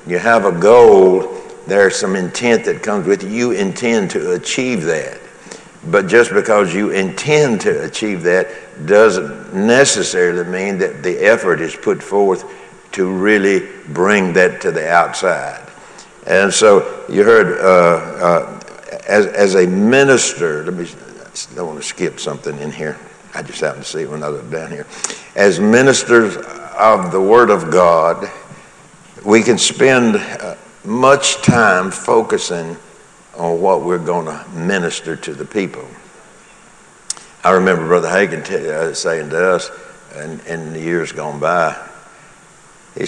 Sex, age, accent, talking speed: male, 60-79, American, 145 wpm